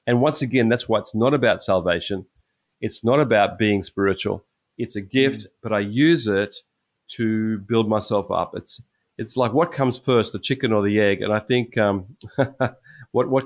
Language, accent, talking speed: English, Australian, 185 wpm